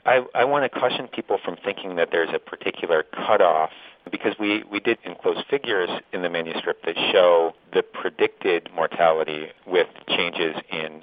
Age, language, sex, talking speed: 40-59, English, male, 165 wpm